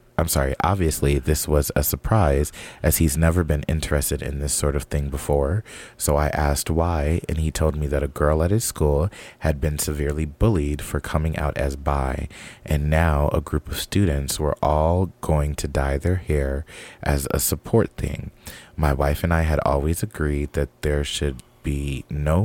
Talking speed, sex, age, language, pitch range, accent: 185 wpm, male, 30-49, English, 70-85 Hz, American